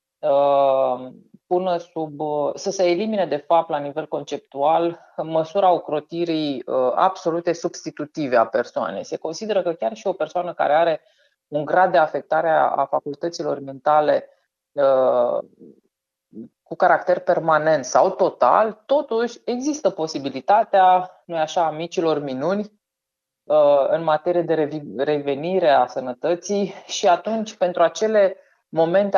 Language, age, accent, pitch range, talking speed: Romanian, 30-49, native, 145-180 Hz, 110 wpm